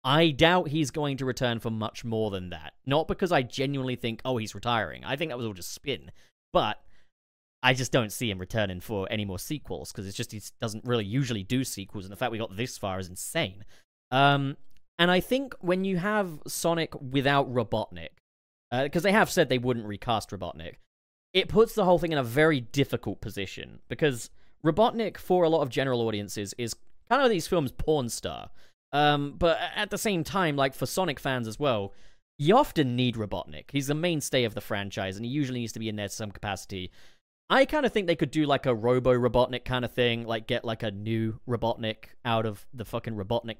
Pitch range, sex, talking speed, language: 110-165 Hz, male, 215 wpm, English